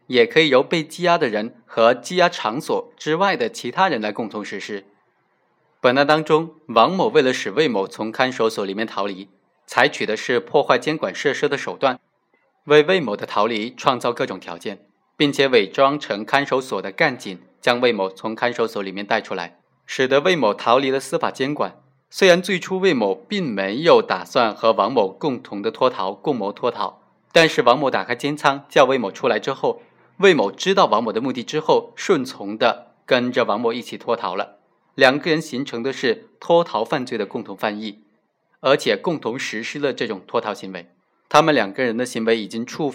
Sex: male